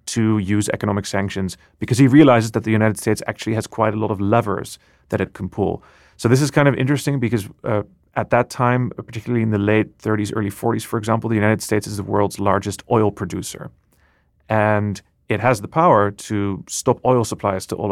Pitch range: 100-120 Hz